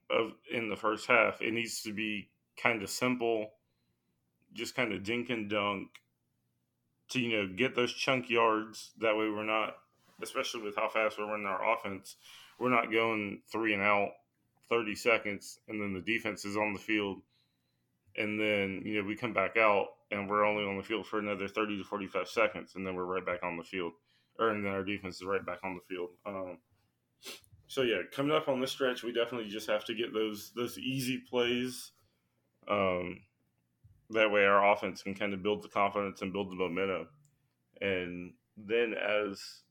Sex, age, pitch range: male, 20-39, 95-110 Hz